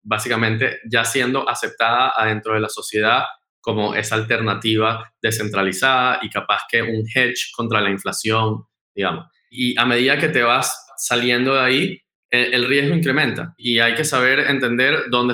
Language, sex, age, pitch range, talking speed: Spanish, male, 20-39, 115-145 Hz, 155 wpm